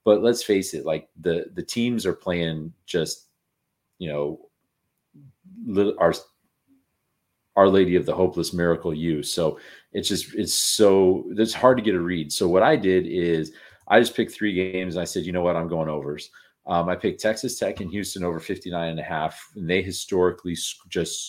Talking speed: 185 wpm